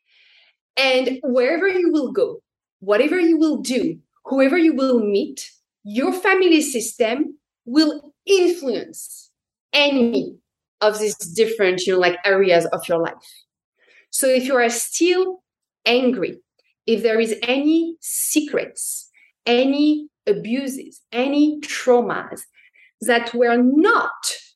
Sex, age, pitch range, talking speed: female, 30-49, 200-295 Hz, 110 wpm